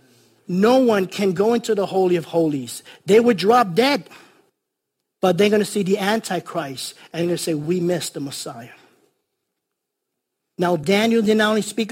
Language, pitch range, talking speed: English, 160-210 Hz, 175 wpm